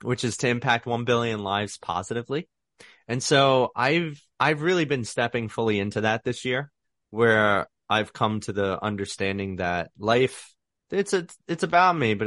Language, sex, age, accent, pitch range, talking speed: English, male, 30-49, American, 100-135 Hz, 165 wpm